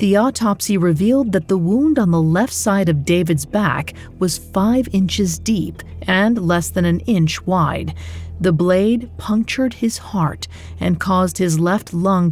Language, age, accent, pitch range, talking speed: English, 40-59, American, 170-215 Hz, 160 wpm